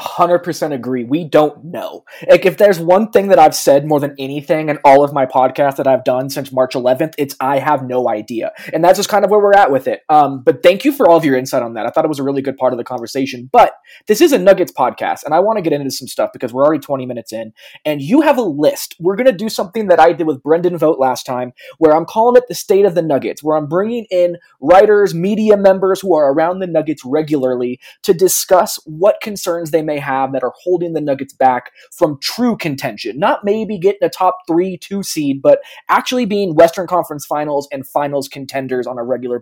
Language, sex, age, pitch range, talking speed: English, male, 20-39, 140-195 Hz, 245 wpm